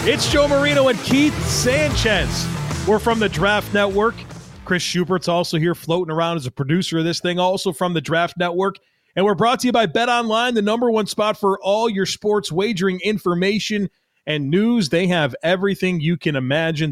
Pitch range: 160-210 Hz